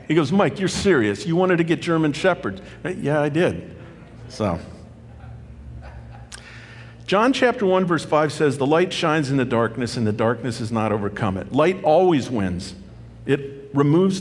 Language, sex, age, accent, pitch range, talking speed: English, male, 50-69, American, 115-160 Hz, 170 wpm